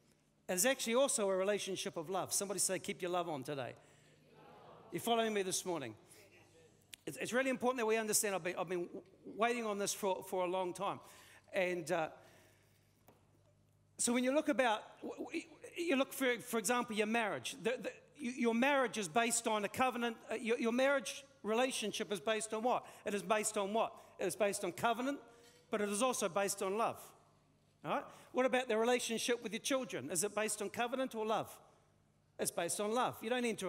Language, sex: English, male